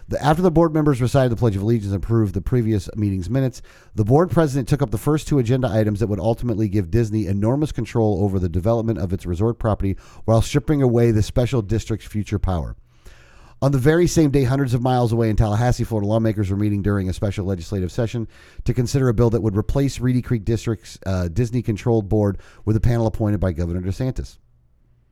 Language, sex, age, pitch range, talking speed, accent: English, male, 40-59, 105-130 Hz, 210 wpm, American